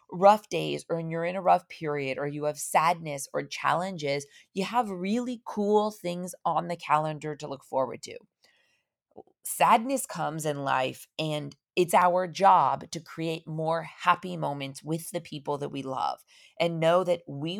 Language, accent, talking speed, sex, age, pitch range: English, American, 165 wpm, female, 30-49, 150-200 Hz